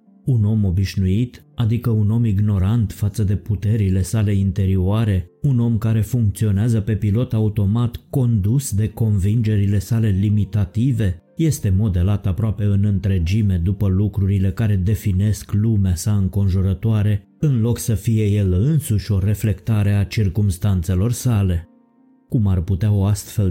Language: Romanian